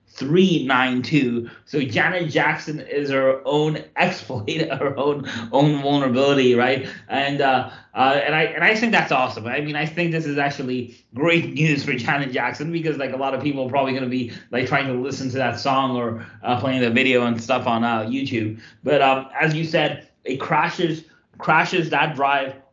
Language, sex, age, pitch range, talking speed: English, male, 20-39, 130-160 Hz, 195 wpm